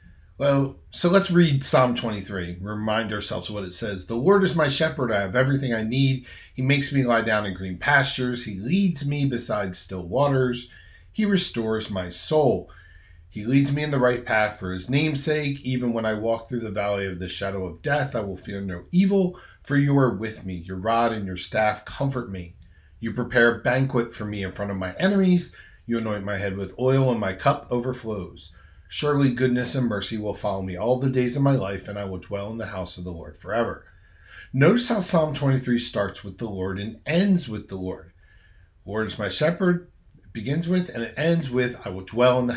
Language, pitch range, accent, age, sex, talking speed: English, 100-135 Hz, American, 40-59, male, 215 wpm